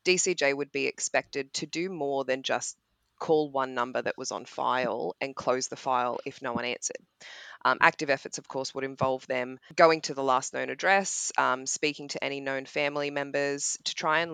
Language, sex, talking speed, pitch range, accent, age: English, female, 200 wpm, 135-155 Hz, Australian, 20-39